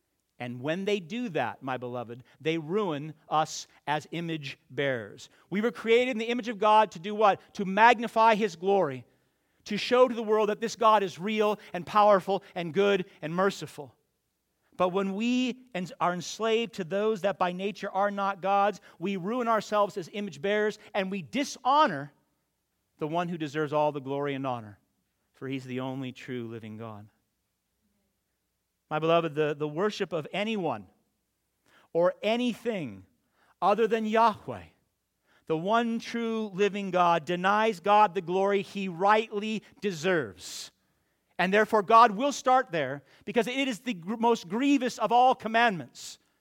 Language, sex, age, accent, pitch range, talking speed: English, male, 50-69, American, 155-220 Hz, 155 wpm